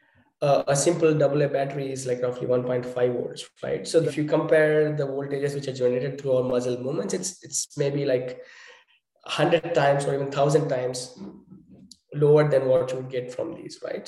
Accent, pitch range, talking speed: Indian, 130-155 Hz, 190 wpm